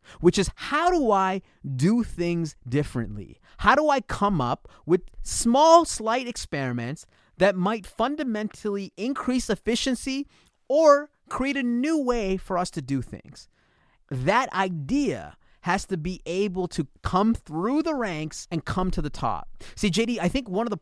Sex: male